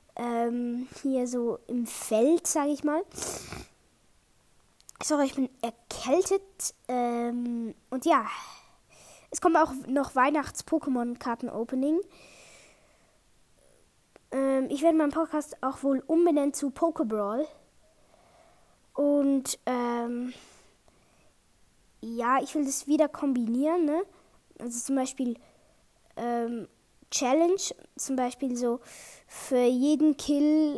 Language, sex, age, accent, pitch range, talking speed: German, female, 20-39, German, 245-305 Hz, 95 wpm